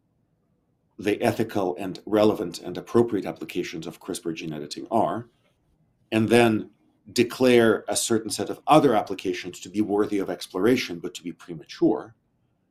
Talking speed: 140 wpm